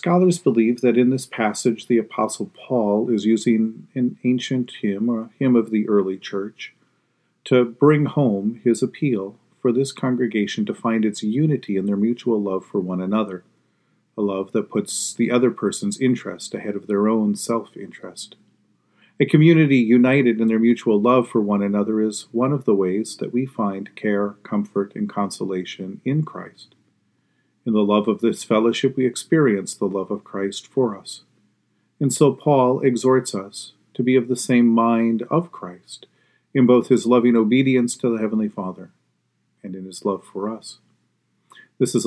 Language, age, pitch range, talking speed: English, 40-59, 105-125 Hz, 170 wpm